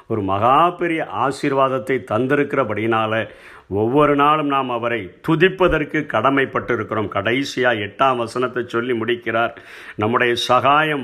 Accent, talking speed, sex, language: native, 100 wpm, male, Tamil